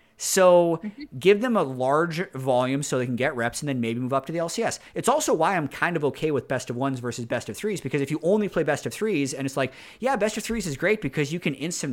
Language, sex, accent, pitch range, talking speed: English, male, American, 125-170 Hz, 280 wpm